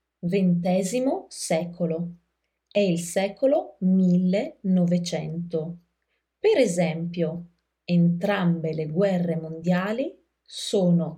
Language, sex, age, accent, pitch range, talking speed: English, female, 30-49, Italian, 170-195 Hz, 70 wpm